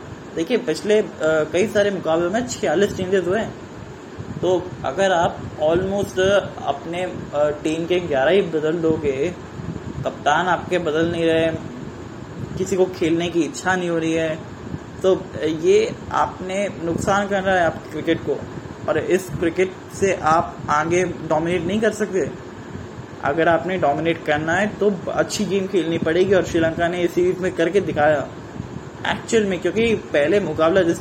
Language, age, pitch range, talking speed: Hindi, 20-39, 155-185 Hz, 155 wpm